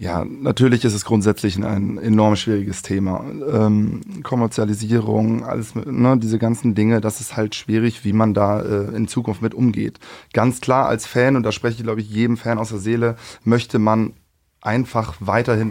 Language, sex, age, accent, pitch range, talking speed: German, male, 20-39, German, 105-120 Hz, 180 wpm